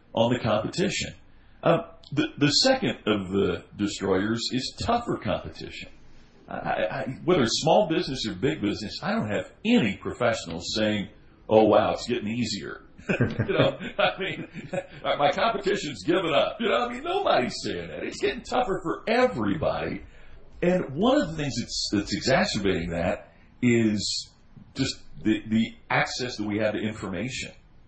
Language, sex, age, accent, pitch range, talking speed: English, male, 50-69, American, 100-125 Hz, 155 wpm